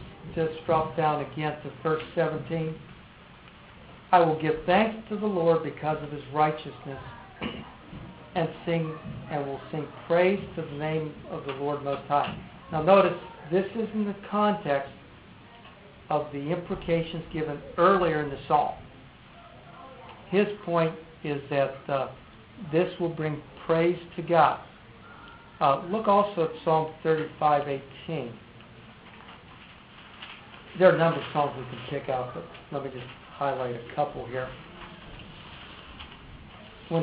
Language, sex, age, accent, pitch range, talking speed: English, male, 60-79, American, 140-170 Hz, 135 wpm